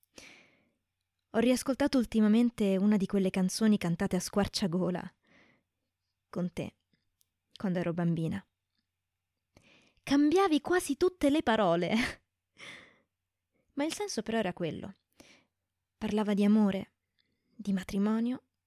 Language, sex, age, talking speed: Italian, female, 20-39, 100 wpm